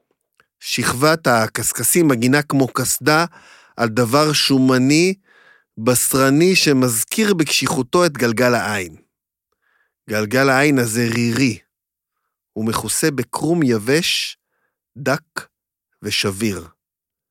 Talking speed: 85 wpm